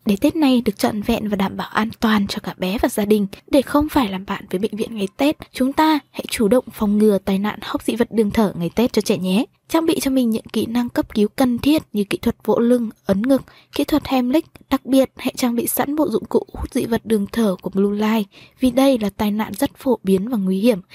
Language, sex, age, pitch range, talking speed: Vietnamese, female, 20-39, 205-265 Hz, 270 wpm